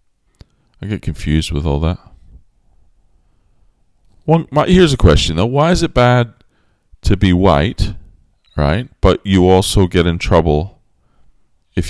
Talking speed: 140 wpm